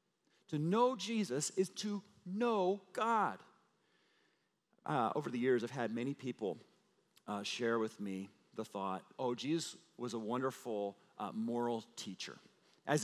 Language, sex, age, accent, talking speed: English, male, 40-59, American, 140 wpm